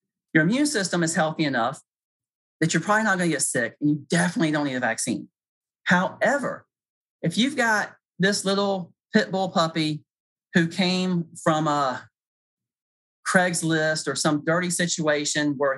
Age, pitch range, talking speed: 30-49, 150-195 Hz, 150 wpm